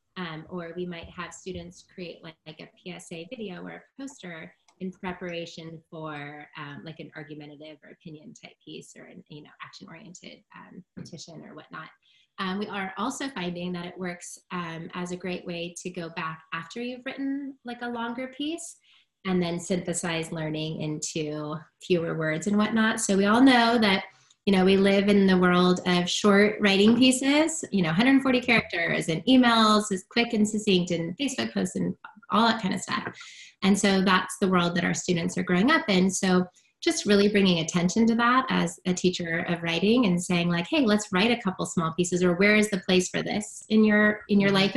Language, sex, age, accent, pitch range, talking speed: English, female, 20-39, American, 170-210 Hz, 200 wpm